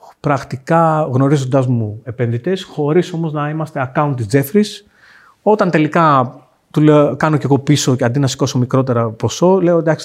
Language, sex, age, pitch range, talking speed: Greek, male, 40-59, 125-180 Hz, 155 wpm